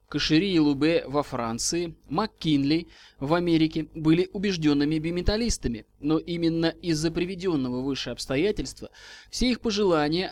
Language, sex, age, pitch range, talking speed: Russian, male, 20-39, 150-190 Hz, 115 wpm